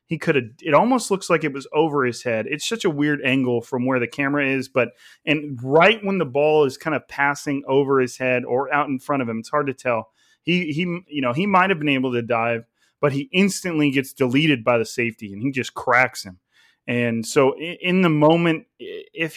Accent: American